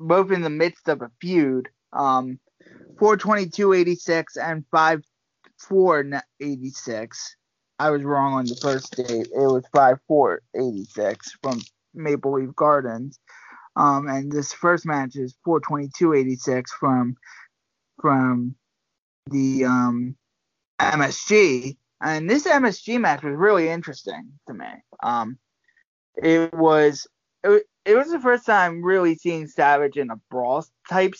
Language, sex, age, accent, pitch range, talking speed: English, male, 20-39, American, 135-190 Hz, 150 wpm